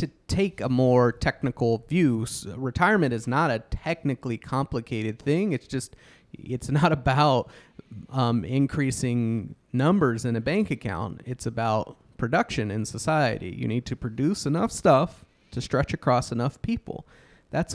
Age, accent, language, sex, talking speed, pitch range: 30-49, American, English, male, 140 wpm, 115-145 Hz